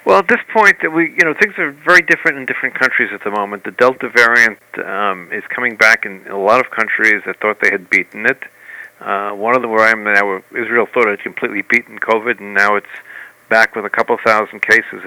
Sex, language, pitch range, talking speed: male, English, 105-125 Hz, 240 wpm